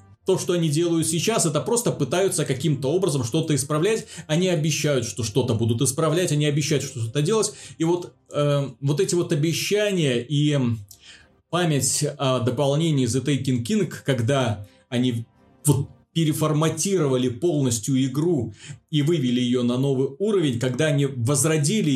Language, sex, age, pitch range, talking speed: Russian, male, 30-49, 125-155 Hz, 145 wpm